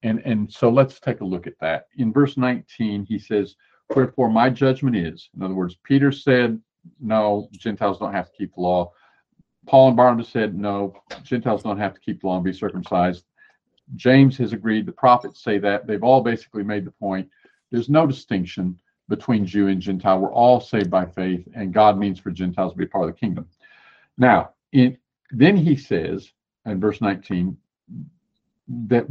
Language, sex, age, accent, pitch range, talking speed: English, male, 50-69, American, 100-140 Hz, 190 wpm